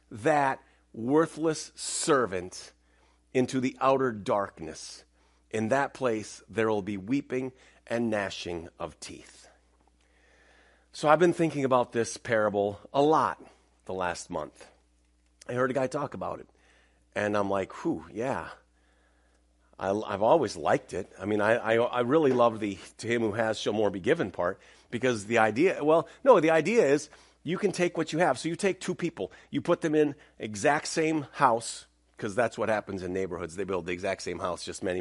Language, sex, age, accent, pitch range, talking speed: English, male, 40-59, American, 90-130 Hz, 180 wpm